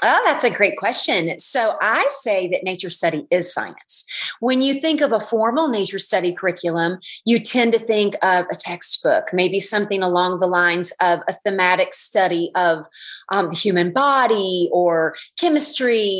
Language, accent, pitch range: English, American, 180-235 Hz